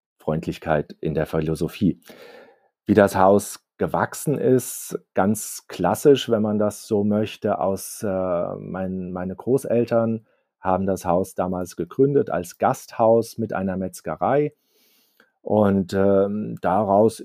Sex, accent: male, German